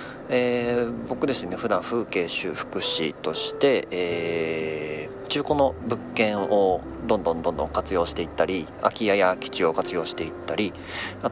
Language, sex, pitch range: Japanese, male, 85-120 Hz